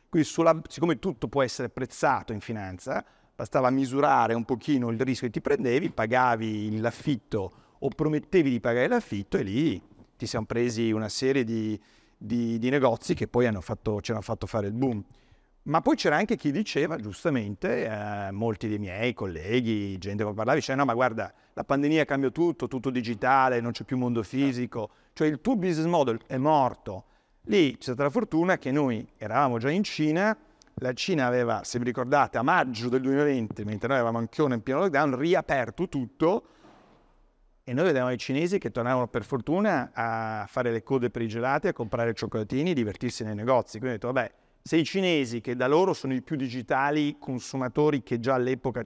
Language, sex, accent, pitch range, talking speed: Italian, male, native, 115-140 Hz, 190 wpm